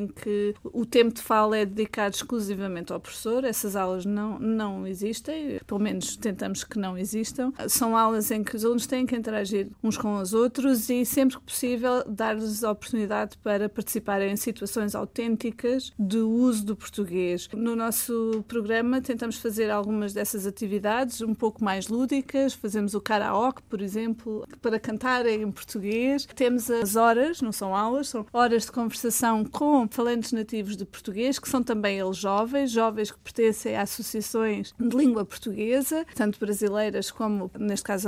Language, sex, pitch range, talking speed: Portuguese, female, 205-235 Hz, 165 wpm